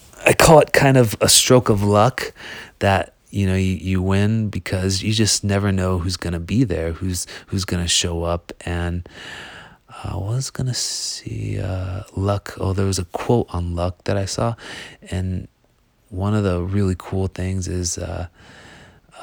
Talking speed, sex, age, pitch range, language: 170 wpm, male, 30-49, 85-95 Hz, English